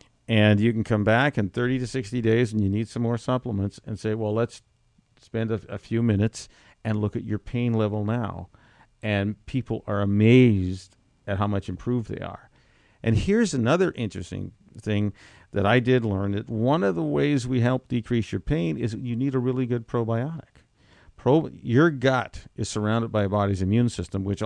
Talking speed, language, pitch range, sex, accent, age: 190 wpm, English, 100-125 Hz, male, American, 50-69